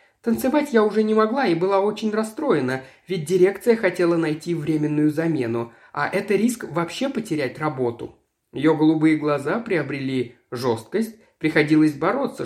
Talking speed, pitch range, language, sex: 135 wpm, 155-220 Hz, Russian, male